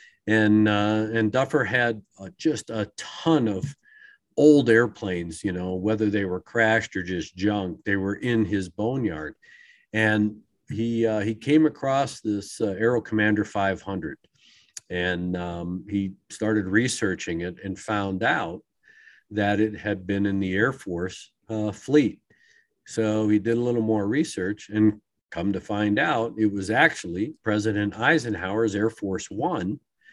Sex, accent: male, American